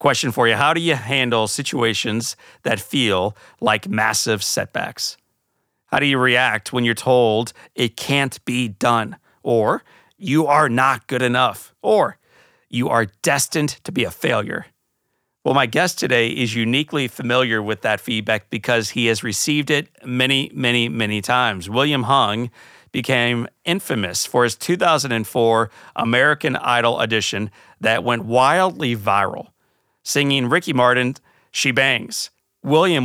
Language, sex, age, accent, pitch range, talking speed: English, male, 40-59, American, 115-145 Hz, 140 wpm